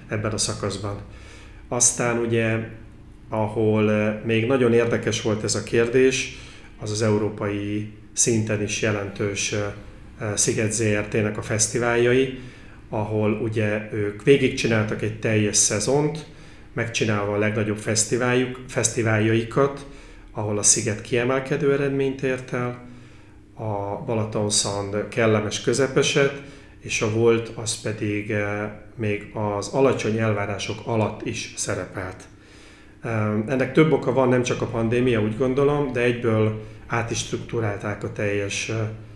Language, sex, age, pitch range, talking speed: Hungarian, male, 30-49, 105-120 Hz, 110 wpm